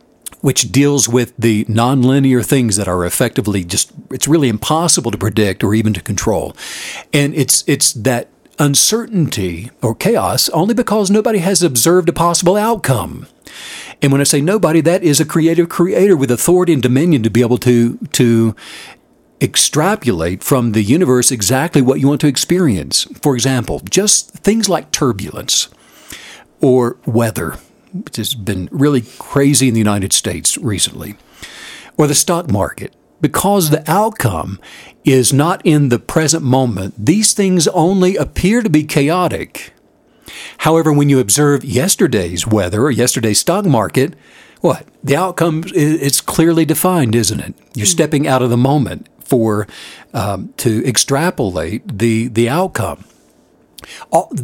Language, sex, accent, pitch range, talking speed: English, male, American, 115-165 Hz, 145 wpm